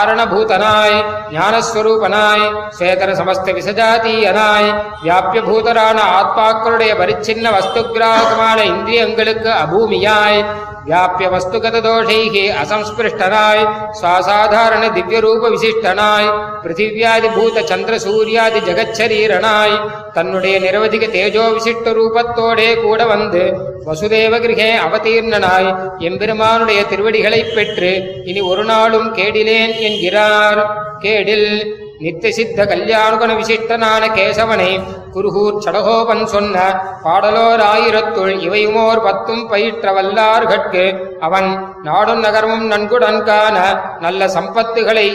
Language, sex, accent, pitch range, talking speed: Tamil, male, native, 195-225 Hz, 50 wpm